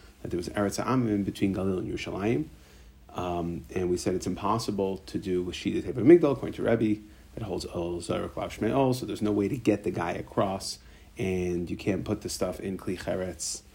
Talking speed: 200 wpm